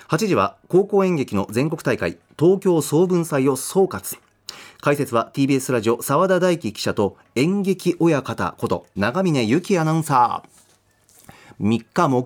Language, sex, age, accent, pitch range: Japanese, male, 40-59, native, 115-185 Hz